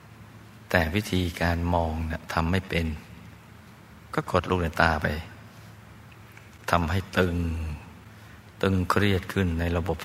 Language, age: Thai, 60-79